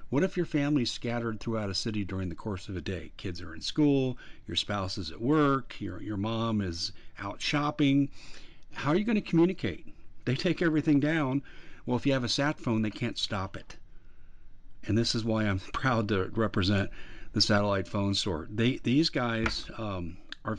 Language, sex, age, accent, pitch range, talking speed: English, male, 50-69, American, 95-120 Hz, 190 wpm